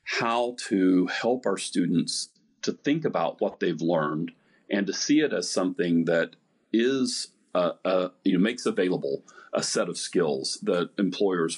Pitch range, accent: 90-125 Hz, American